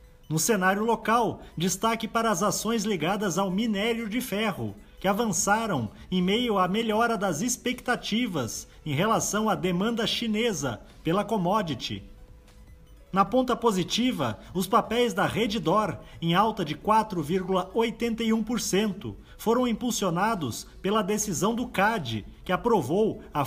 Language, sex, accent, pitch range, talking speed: Portuguese, male, Brazilian, 170-230 Hz, 120 wpm